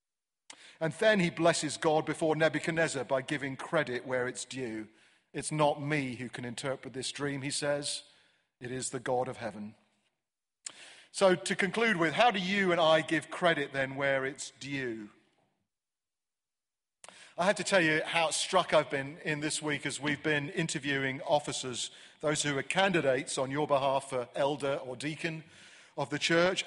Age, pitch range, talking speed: 40-59, 130-160 Hz, 170 wpm